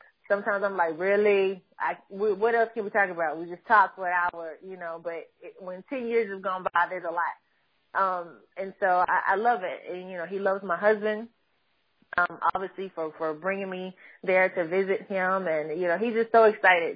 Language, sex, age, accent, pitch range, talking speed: English, female, 20-39, American, 175-215 Hz, 220 wpm